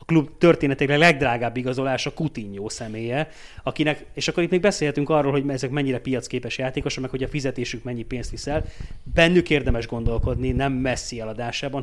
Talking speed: 160 wpm